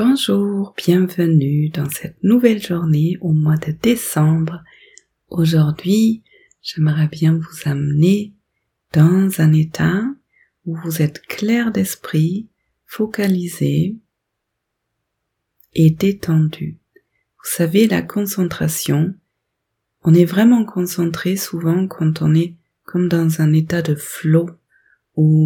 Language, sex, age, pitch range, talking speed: French, female, 30-49, 155-185 Hz, 105 wpm